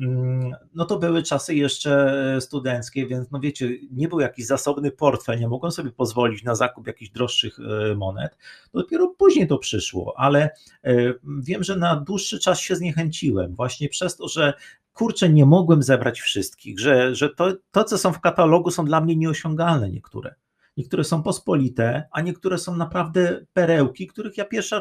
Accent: native